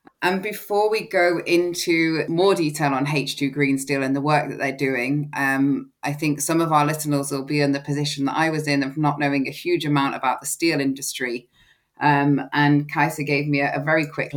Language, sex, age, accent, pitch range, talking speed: English, female, 20-39, British, 135-150 Hz, 215 wpm